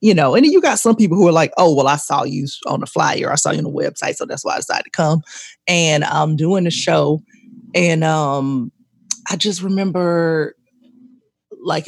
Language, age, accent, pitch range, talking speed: English, 20-39, American, 150-205 Hz, 210 wpm